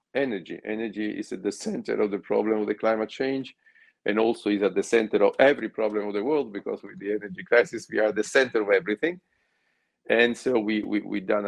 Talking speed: 220 wpm